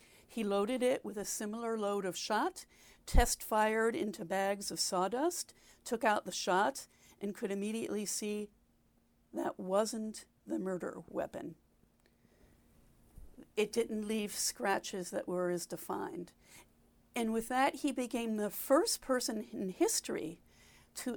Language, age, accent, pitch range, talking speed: English, 50-69, American, 190-240 Hz, 130 wpm